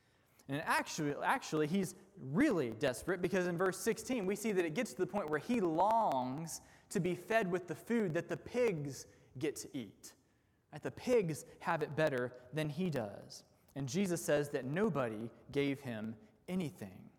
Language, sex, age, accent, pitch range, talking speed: English, male, 20-39, American, 145-205 Hz, 175 wpm